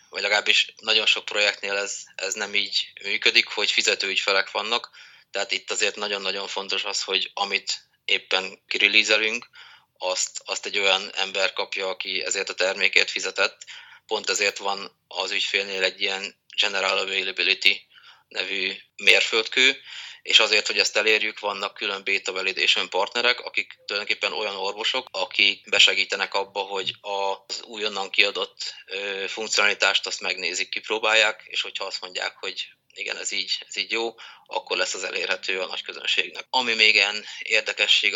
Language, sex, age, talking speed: Hungarian, male, 30-49, 145 wpm